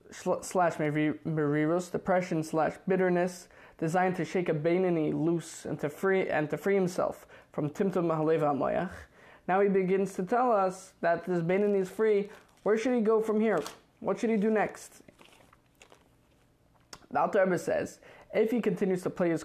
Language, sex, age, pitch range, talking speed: English, male, 20-39, 160-200 Hz, 165 wpm